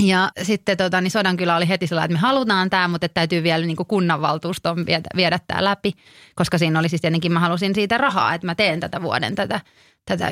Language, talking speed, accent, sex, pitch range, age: Finnish, 225 wpm, native, female, 170-205 Hz, 30-49